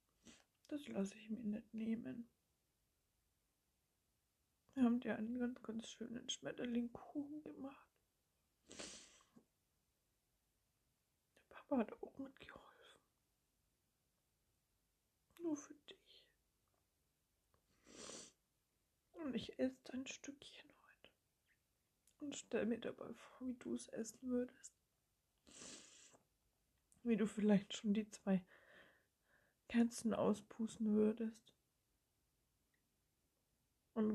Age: 60-79